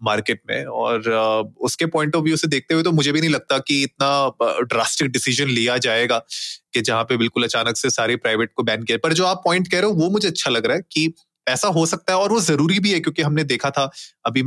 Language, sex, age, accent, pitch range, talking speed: Hindi, male, 30-49, native, 120-160 Hz, 250 wpm